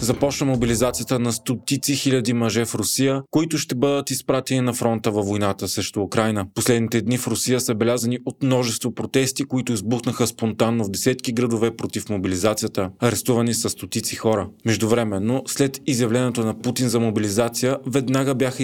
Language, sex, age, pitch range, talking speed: Bulgarian, male, 20-39, 115-135 Hz, 160 wpm